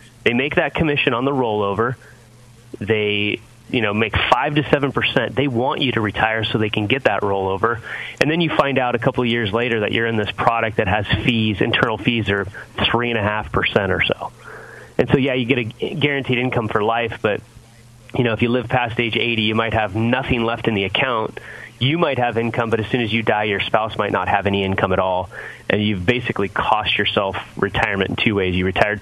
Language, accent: English, American